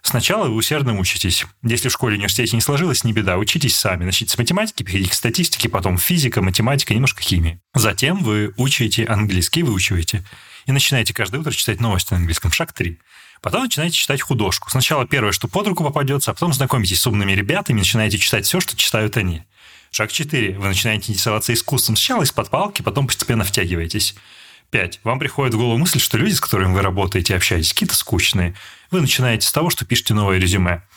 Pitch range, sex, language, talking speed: 100-135 Hz, male, Russian, 190 wpm